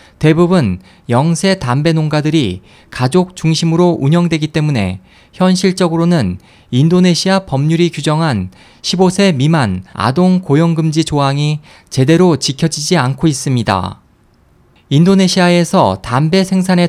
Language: Korean